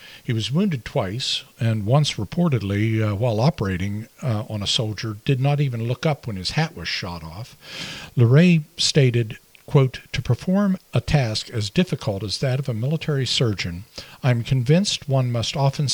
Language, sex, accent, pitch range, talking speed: English, male, American, 115-145 Hz, 175 wpm